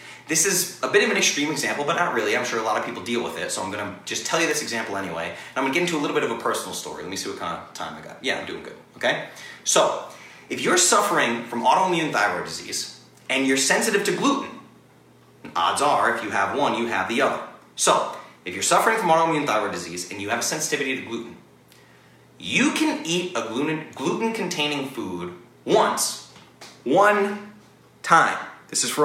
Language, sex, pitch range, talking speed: English, male, 100-155 Hz, 215 wpm